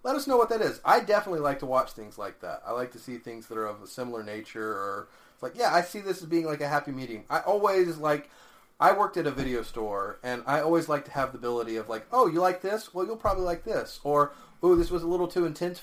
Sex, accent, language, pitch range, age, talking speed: male, American, English, 115-150 Hz, 30-49, 280 wpm